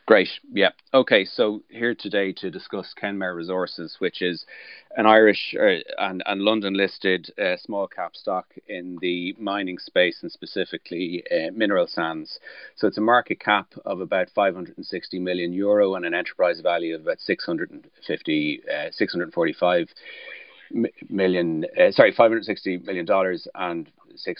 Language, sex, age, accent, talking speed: English, male, 30-49, Irish, 160 wpm